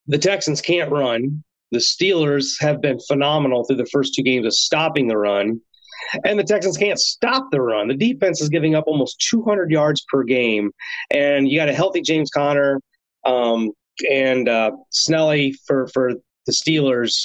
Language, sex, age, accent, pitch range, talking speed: English, male, 30-49, American, 130-170 Hz, 170 wpm